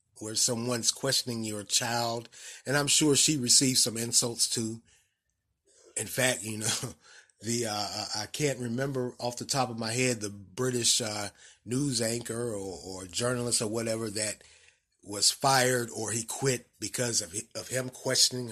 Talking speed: 160 wpm